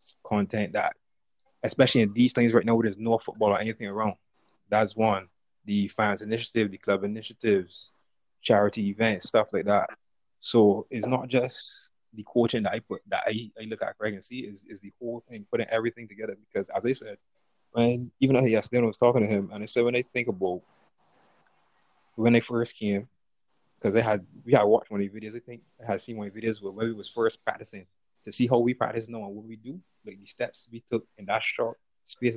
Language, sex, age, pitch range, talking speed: English, male, 20-39, 105-120 Hz, 220 wpm